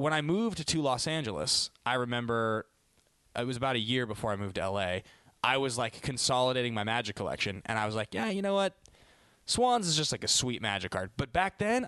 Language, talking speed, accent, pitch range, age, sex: English, 220 wpm, American, 105-145 Hz, 20-39, male